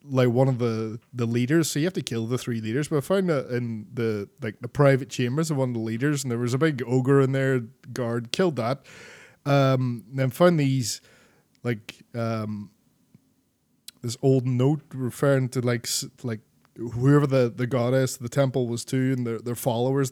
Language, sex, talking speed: English, male, 195 wpm